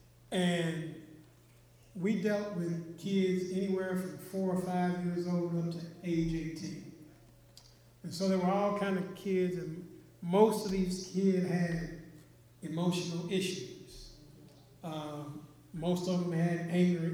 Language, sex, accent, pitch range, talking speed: English, male, American, 155-185 Hz, 135 wpm